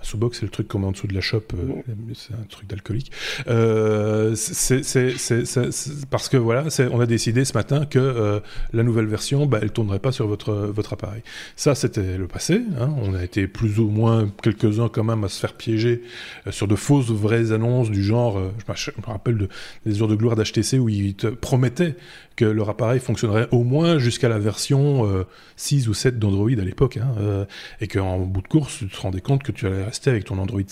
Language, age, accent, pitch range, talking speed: French, 20-39, French, 105-130 Hz, 225 wpm